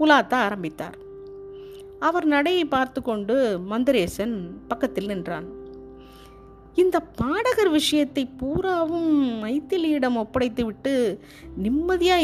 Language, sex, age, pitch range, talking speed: Tamil, female, 30-49, 190-300 Hz, 85 wpm